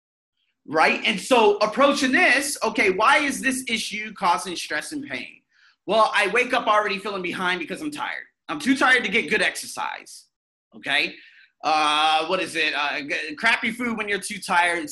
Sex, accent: male, American